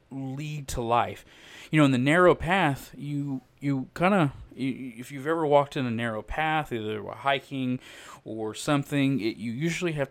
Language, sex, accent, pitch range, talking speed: English, male, American, 115-135 Hz, 165 wpm